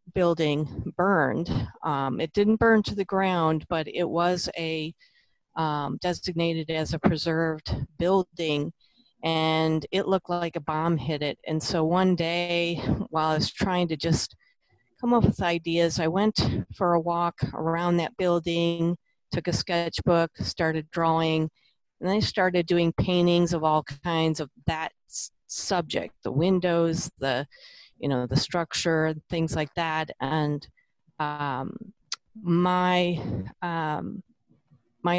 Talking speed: 140 wpm